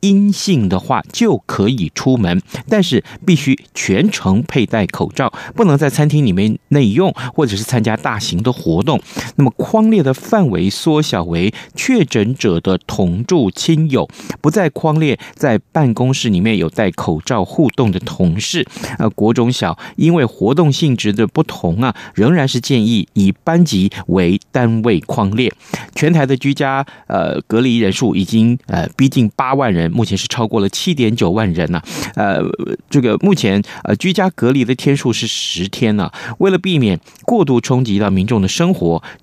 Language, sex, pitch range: Chinese, male, 105-155 Hz